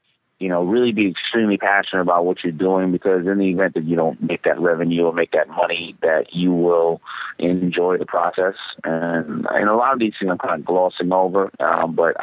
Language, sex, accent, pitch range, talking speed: English, male, American, 90-110 Hz, 225 wpm